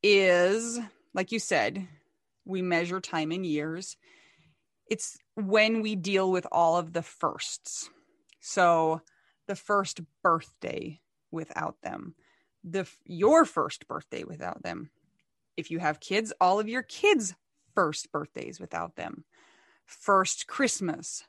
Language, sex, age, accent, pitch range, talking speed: English, female, 30-49, American, 160-200 Hz, 125 wpm